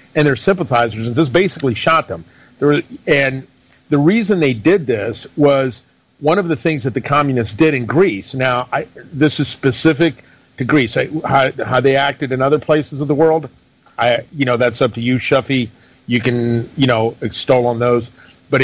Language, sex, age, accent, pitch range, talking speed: English, male, 50-69, American, 120-140 Hz, 185 wpm